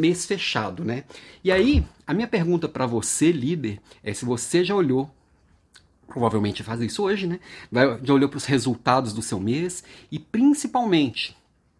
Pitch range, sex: 125-195 Hz, male